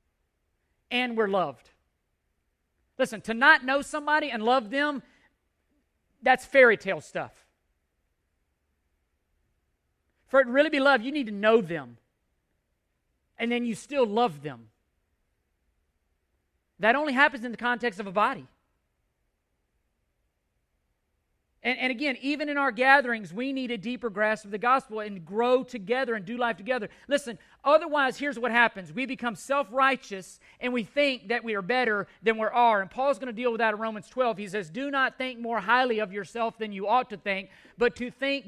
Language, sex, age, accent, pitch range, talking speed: English, male, 40-59, American, 195-255 Hz, 170 wpm